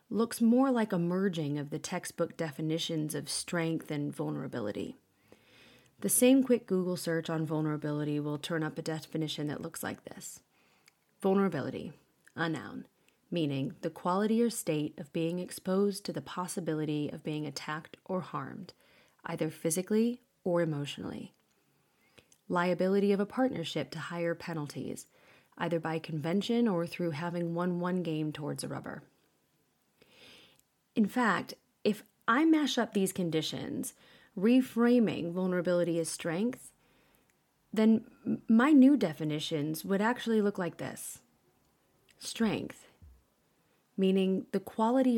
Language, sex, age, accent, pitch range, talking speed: English, female, 30-49, American, 160-210 Hz, 130 wpm